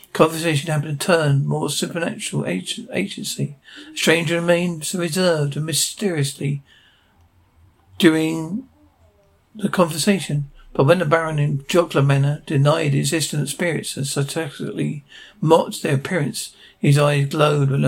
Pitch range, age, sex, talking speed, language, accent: 140-165 Hz, 60-79, male, 125 wpm, English, British